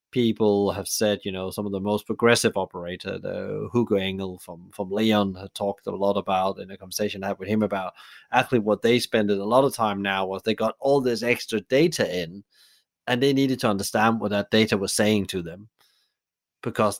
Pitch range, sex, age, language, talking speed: 100-115 Hz, male, 30-49, English, 210 wpm